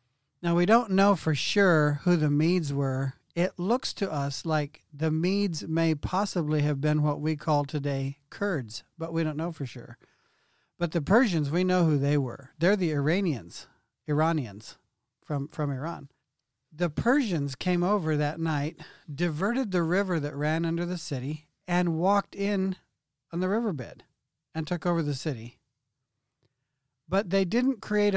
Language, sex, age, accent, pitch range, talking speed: English, male, 50-69, American, 135-175 Hz, 160 wpm